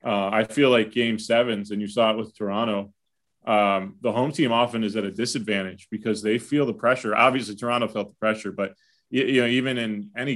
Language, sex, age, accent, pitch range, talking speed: English, male, 30-49, American, 100-115 Hz, 215 wpm